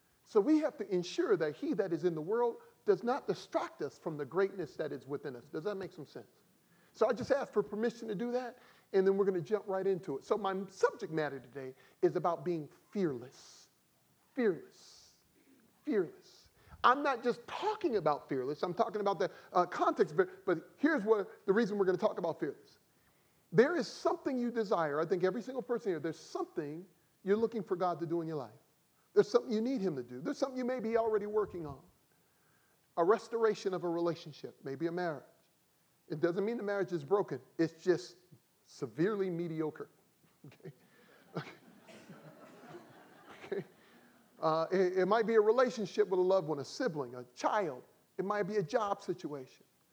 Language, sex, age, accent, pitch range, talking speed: English, male, 40-59, American, 165-230 Hz, 190 wpm